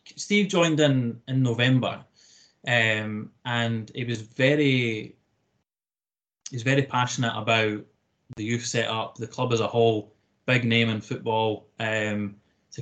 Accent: British